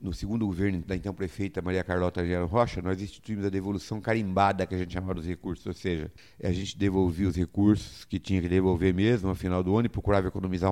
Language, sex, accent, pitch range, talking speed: Portuguese, male, Brazilian, 95-115 Hz, 225 wpm